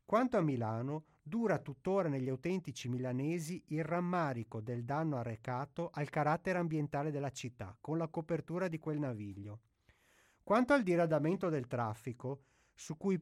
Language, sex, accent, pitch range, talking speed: Italian, male, native, 125-175 Hz, 140 wpm